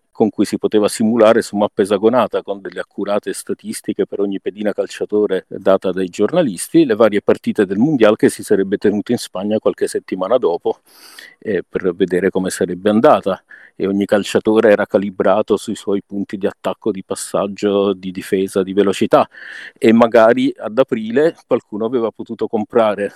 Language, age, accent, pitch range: Italian, 50-69, native, 95-120 Hz